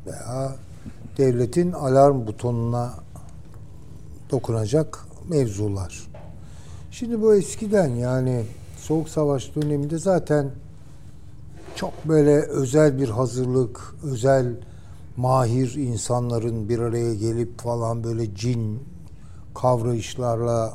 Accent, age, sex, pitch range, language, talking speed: native, 60-79, male, 110-140 Hz, Turkish, 85 wpm